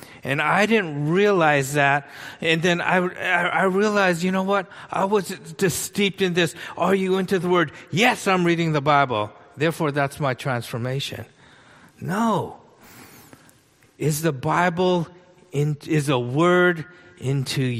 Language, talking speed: English, 140 wpm